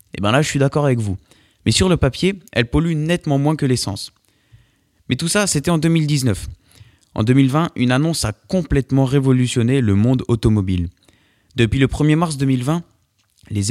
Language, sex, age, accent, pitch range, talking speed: French, male, 20-39, French, 110-145 Hz, 175 wpm